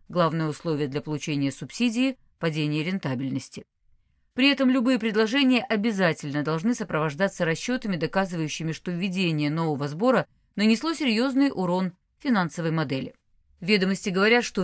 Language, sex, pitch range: Russian, female, 160-225 Hz